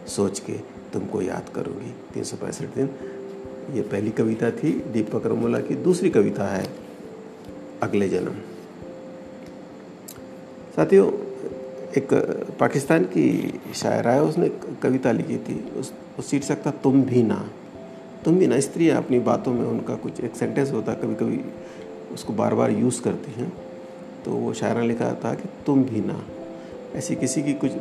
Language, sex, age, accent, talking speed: Hindi, male, 50-69, native, 150 wpm